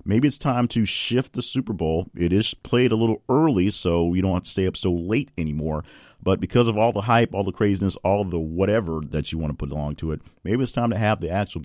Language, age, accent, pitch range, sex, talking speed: English, 40-59, American, 80-100 Hz, male, 265 wpm